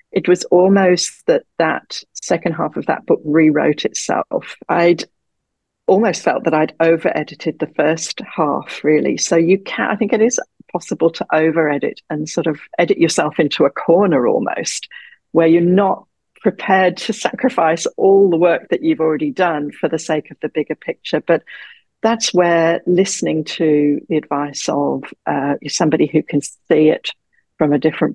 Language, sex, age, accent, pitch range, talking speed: English, female, 50-69, British, 150-190 Hz, 165 wpm